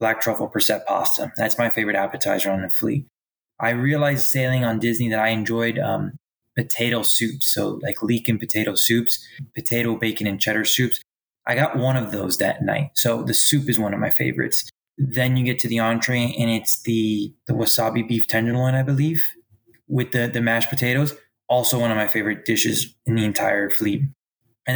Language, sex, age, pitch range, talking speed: English, male, 20-39, 115-135 Hz, 190 wpm